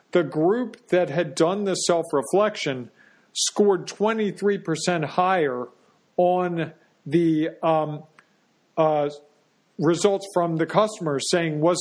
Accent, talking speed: American, 100 wpm